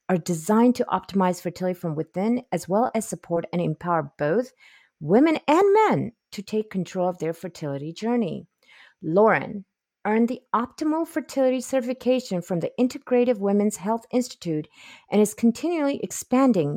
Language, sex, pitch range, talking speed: English, female, 170-235 Hz, 145 wpm